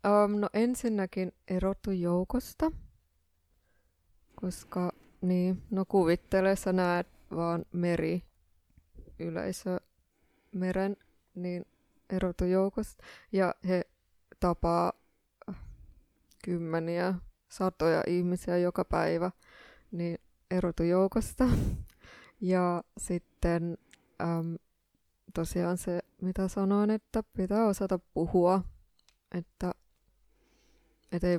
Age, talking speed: 20-39, 75 wpm